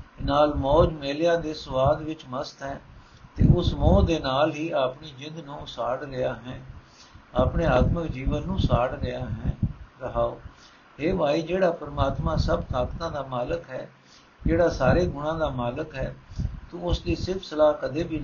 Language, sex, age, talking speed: Punjabi, male, 60-79, 165 wpm